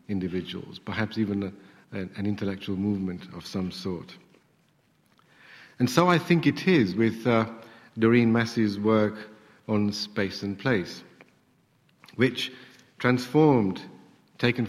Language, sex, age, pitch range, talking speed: English, male, 50-69, 100-125 Hz, 110 wpm